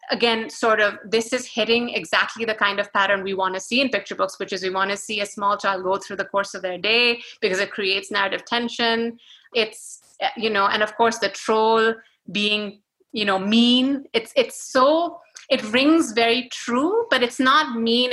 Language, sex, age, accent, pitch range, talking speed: English, female, 30-49, Indian, 200-240 Hz, 205 wpm